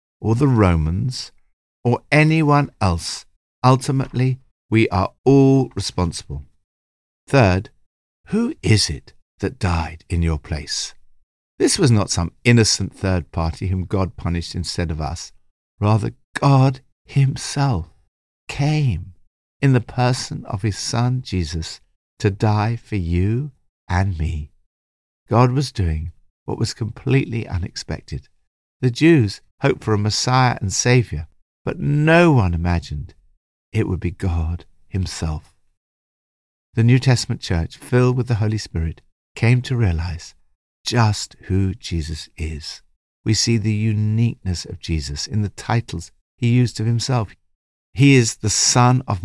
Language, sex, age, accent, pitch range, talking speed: English, male, 60-79, British, 85-125 Hz, 130 wpm